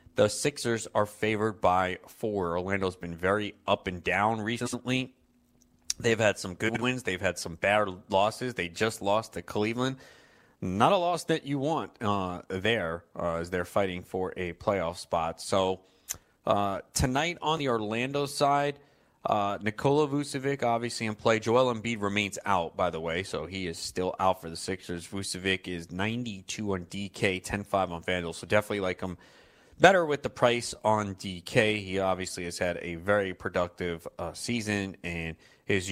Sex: male